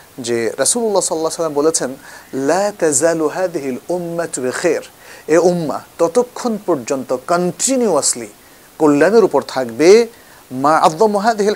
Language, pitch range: Bengali, 130-180 Hz